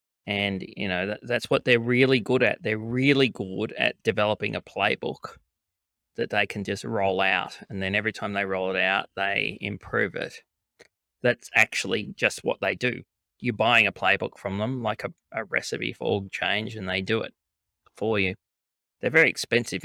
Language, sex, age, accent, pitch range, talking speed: English, male, 20-39, Australian, 95-105 Hz, 180 wpm